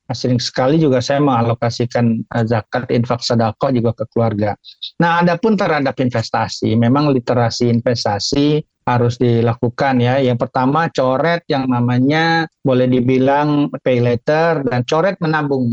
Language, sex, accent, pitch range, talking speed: Indonesian, male, native, 130-155 Hz, 125 wpm